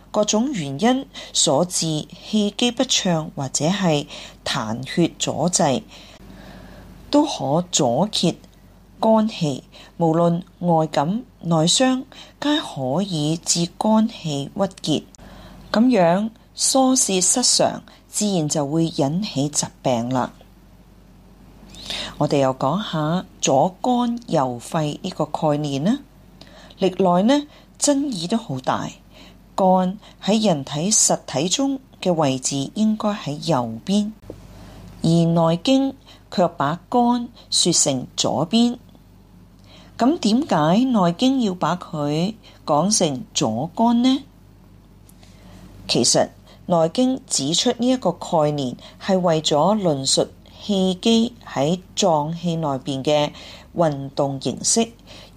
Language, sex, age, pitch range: Chinese, female, 30-49, 145-210 Hz